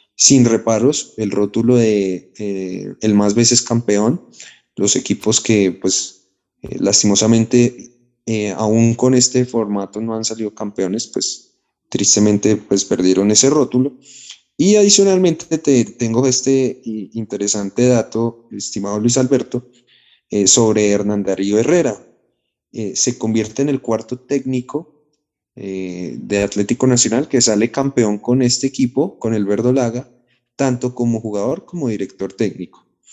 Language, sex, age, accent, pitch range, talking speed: Spanish, male, 30-49, Colombian, 105-125 Hz, 130 wpm